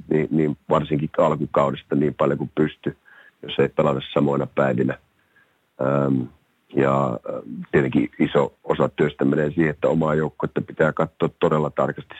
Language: Finnish